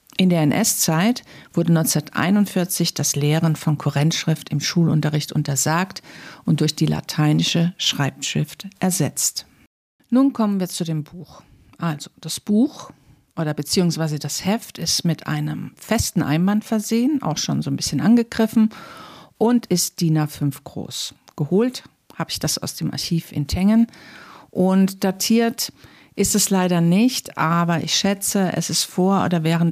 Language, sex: German, female